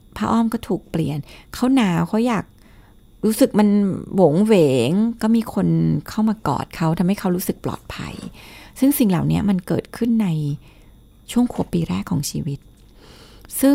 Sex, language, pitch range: female, Thai, 160-215 Hz